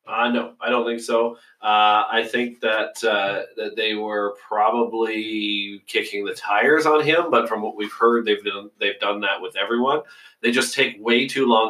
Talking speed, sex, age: 200 wpm, male, 30-49